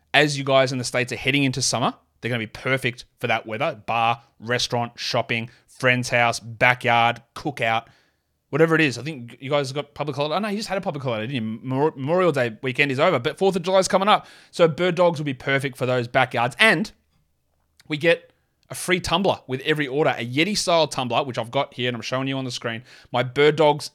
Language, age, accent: English, 20-39, Australian